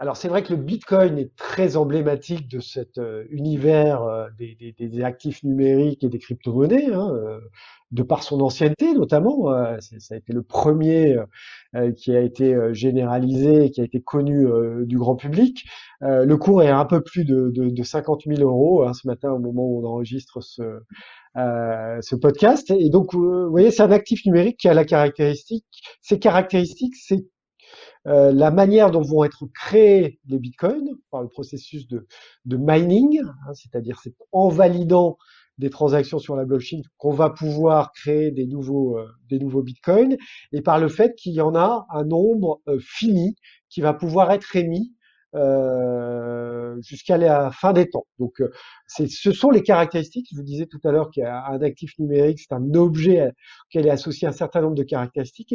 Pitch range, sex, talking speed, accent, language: 130-180 Hz, male, 185 wpm, French, French